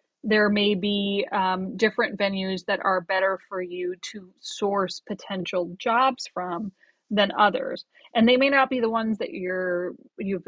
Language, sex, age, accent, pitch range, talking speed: English, female, 30-49, American, 185-230 Hz, 160 wpm